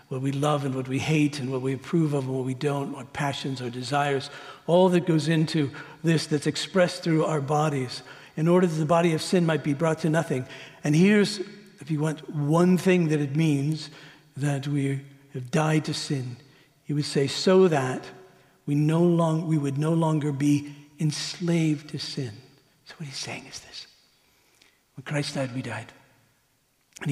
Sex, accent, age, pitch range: male, American, 60-79, 135-165 Hz